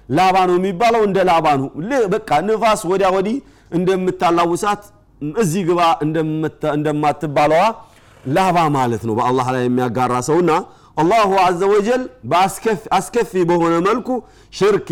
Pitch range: 120-190 Hz